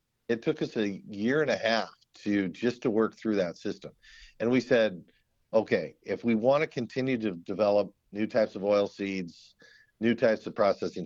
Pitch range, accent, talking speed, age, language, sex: 90-115 Hz, American, 190 wpm, 50-69, English, male